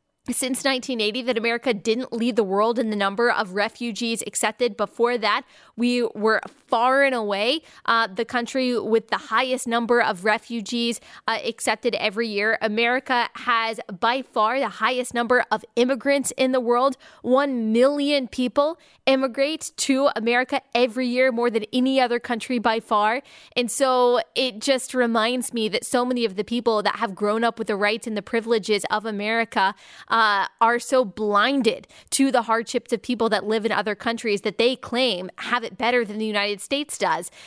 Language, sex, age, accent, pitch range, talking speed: English, female, 20-39, American, 215-250 Hz, 175 wpm